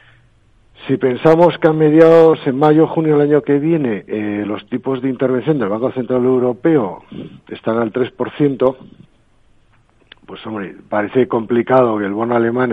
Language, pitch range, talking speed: Spanish, 110-130 Hz, 150 wpm